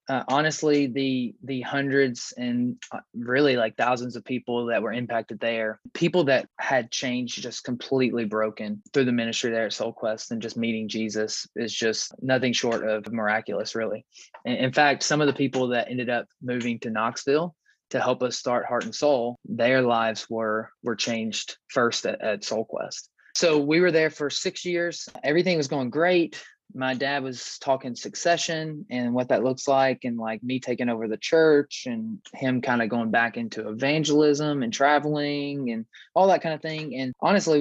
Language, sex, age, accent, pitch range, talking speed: English, male, 20-39, American, 120-145 Hz, 180 wpm